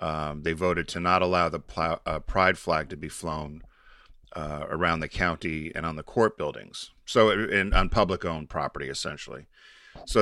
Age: 40-59